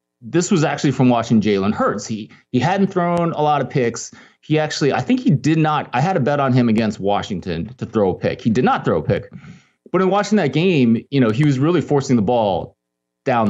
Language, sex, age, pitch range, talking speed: English, male, 30-49, 100-140 Hz, 240 wpm